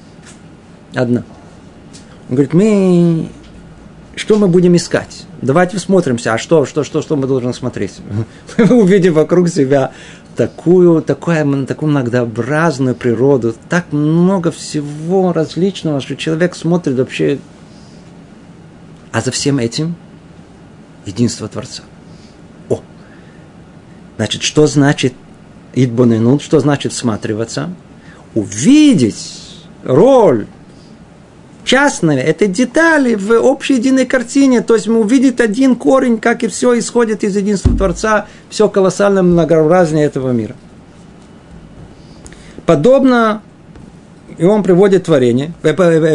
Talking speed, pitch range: 105 wpm, 145-210 Hz